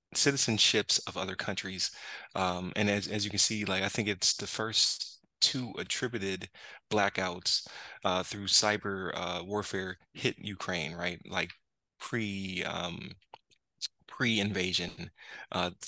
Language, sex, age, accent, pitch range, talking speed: English, male, 20-39, American, 90-100 Hz, 125 wpm